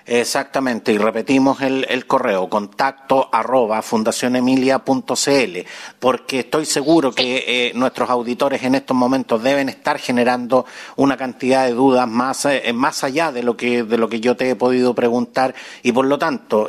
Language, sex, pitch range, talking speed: Spanish, male, 110-130 Hz, 160 wpm